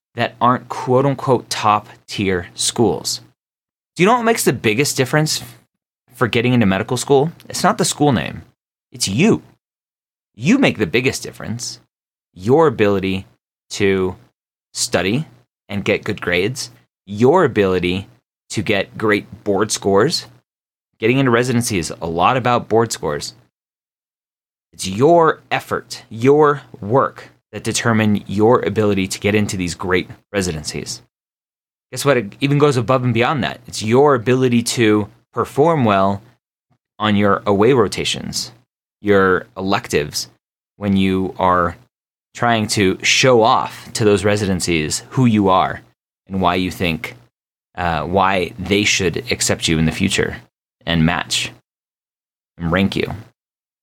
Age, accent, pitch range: 30-49, American, 95-125 Hz